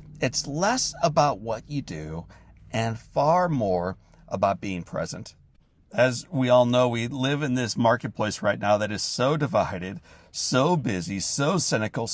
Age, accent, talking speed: 40-59, American, 155 wpm